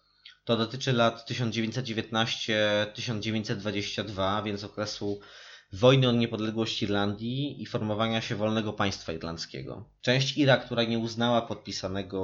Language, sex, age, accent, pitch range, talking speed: Polish, male, 20-39, native, 100-115 Hz, 110 wpm